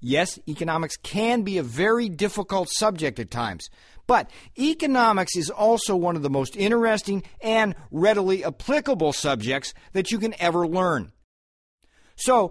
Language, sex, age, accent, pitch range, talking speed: English, male, 50-69, American, 145-200 Hz, 140 wpm